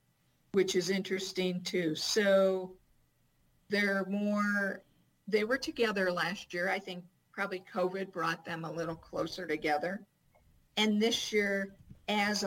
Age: 50-69